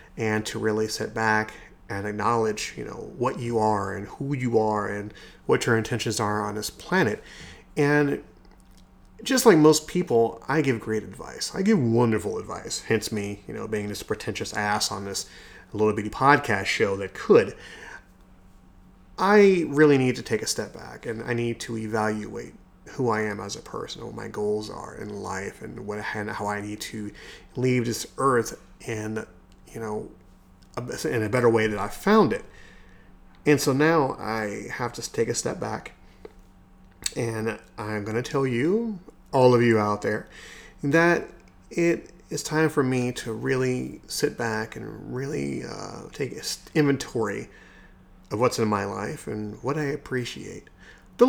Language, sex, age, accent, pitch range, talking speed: English, male, 30-49, American, 100-125 Hz, 170 wpm